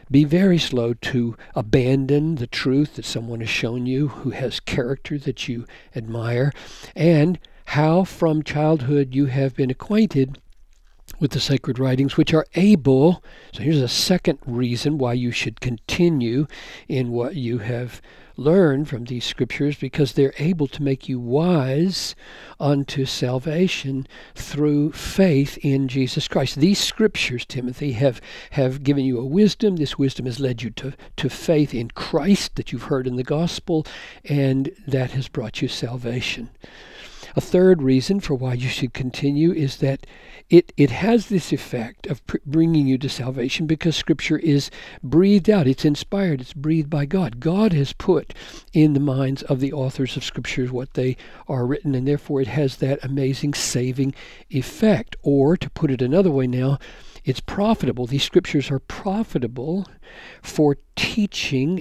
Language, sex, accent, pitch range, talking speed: English, male, American, 130-160 Hz, 160 wpm